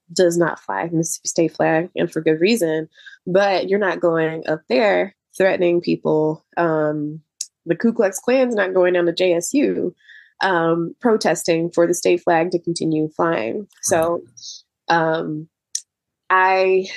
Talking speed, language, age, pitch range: 145 wpm, English, 20-39, 170-230 Hz